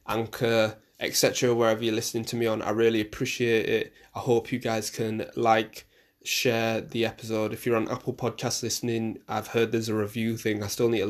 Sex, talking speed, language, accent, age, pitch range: male, 200 wpm, English, British, 20-39, 105-125 Hz